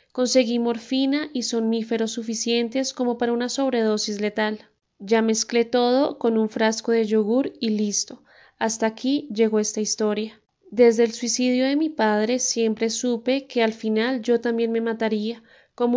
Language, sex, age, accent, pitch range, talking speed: Spanish, female, 20-39, Colombian, 220-250 Hz, 155 wpm